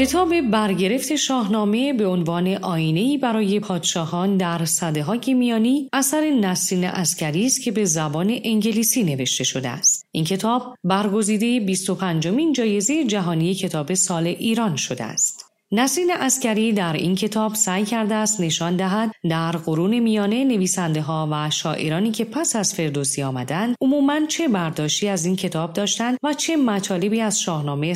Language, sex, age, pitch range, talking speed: Persian, female, 40-59, 165-235 Hz, 145 wpm